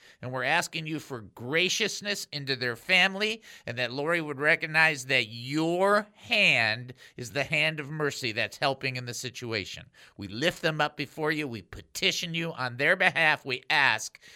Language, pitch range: English, 125-160 Hz